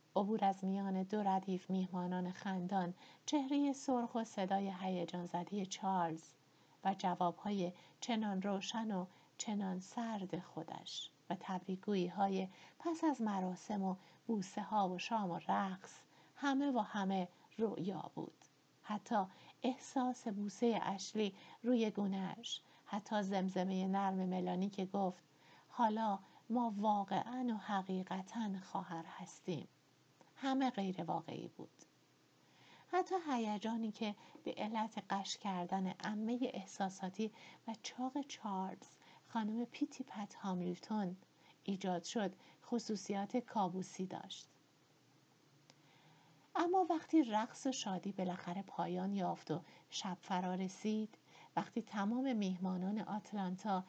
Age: 50-69